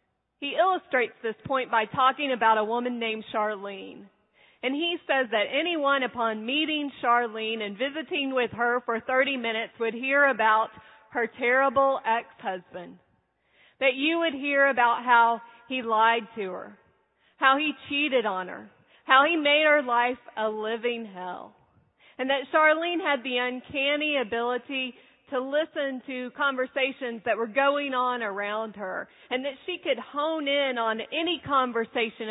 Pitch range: 225-285 Hz